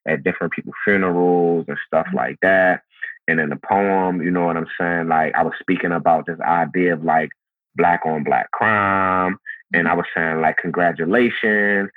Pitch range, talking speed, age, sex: 85-100 Hz, 180 wpm, 30-49, male